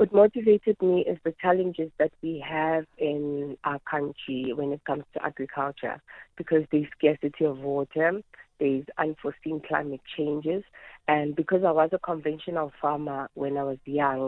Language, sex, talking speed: English, female, 155 wpm